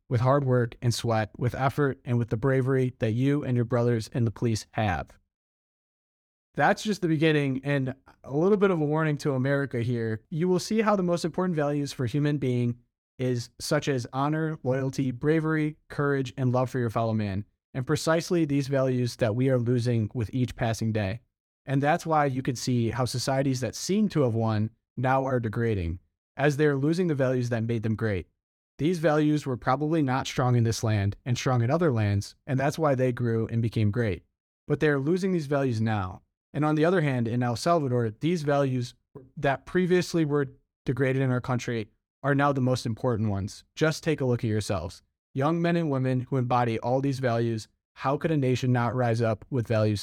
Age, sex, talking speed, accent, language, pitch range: 30-49, male, 205 wpm, American, English, 115-145 Hz